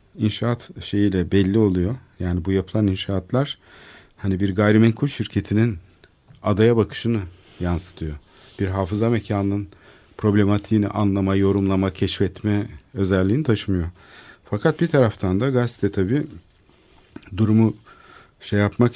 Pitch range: 95-115 Hz